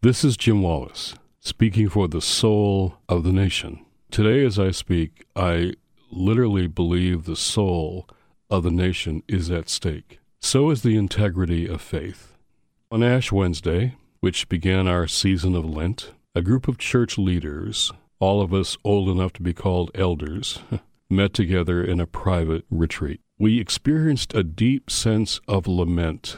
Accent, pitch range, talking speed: American, 85-105 Hz, 155 wpm